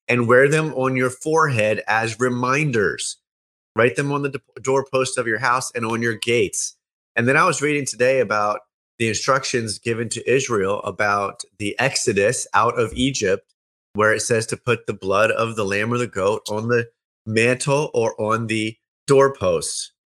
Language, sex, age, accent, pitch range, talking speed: English, male, 30-49, American, 105-130 Hz, 175 wpm